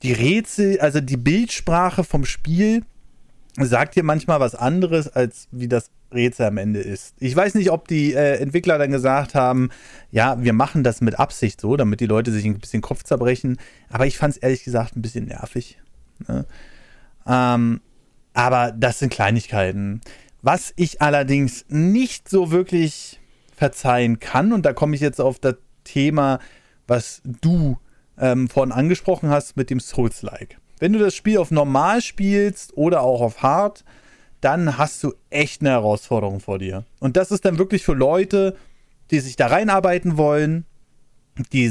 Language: German